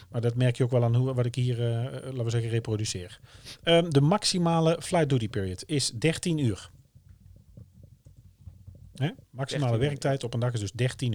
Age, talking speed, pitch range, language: 40-59, 165 wpm, 110-140 Hz, Dutch